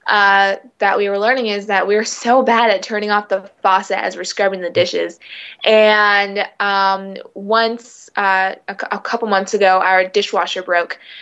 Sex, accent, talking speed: female, American, 185 wpm